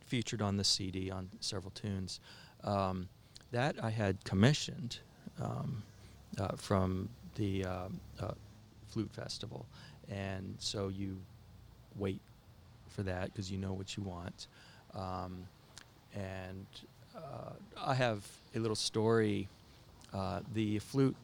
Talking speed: 120 wpm